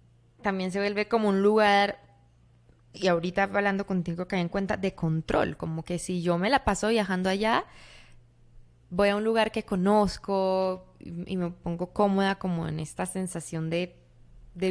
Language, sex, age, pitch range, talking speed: Spanish, female, 20-39, 170-205 Hz, 165 wpm